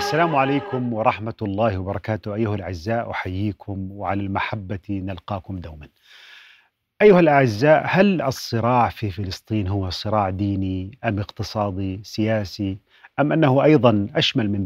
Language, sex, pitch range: Arabic, male, 100-130 Hz